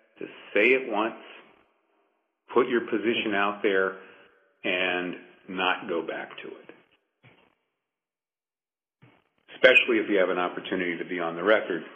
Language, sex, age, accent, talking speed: English, male, 50-69, American, 130 wpm